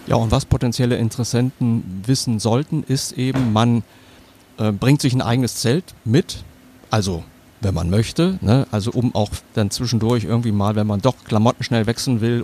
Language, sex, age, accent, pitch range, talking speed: German, male, 50-69, German, 110-130 Hz, 170 wpm